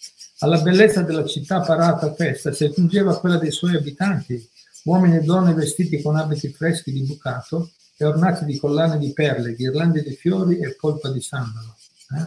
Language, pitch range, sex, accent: Italian, 140-170 Hz, male, native